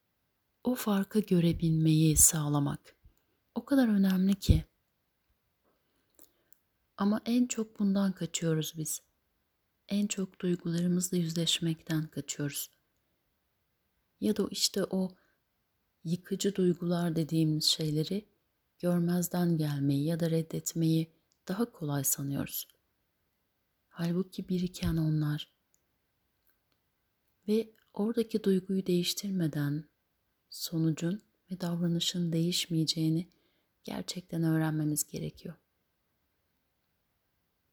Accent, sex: native, female